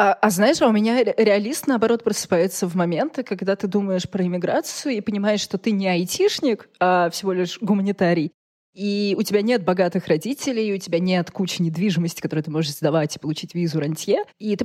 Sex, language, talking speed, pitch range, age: female, Russian, 185 wpm, 170-210 Hz, 20-39